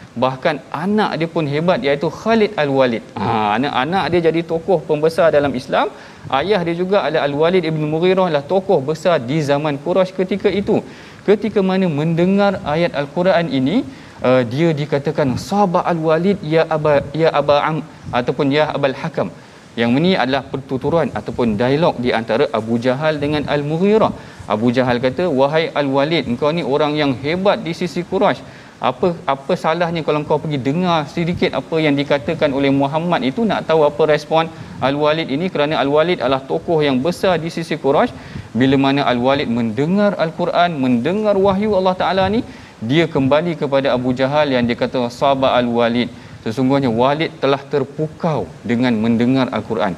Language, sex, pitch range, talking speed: Malayalam, male, 135-175 Hz, 155 wpm